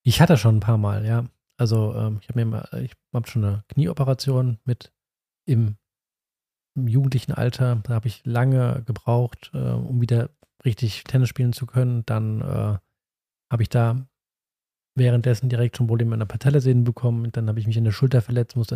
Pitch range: 115-130 Hz